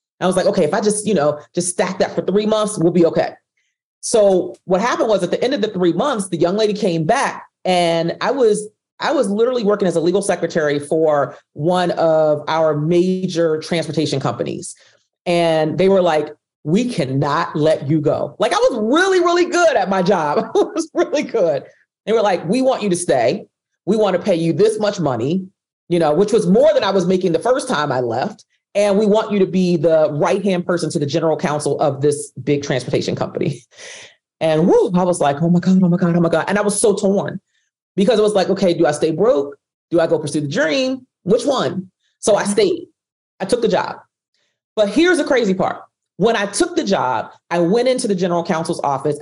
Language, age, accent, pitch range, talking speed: English, 40-59, American, 160-210 Hz, 220 wpm